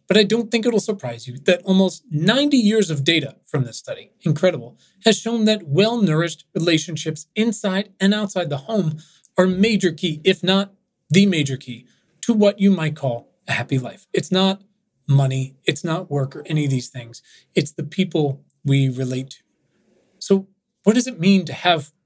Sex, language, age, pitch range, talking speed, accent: male, English, 30-49, 145-195 Hz, 185 wpm, American